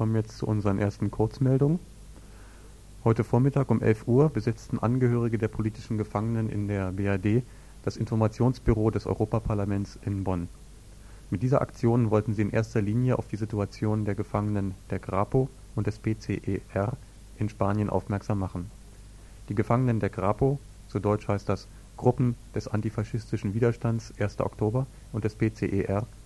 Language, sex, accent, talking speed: German, male, German, 150 wpm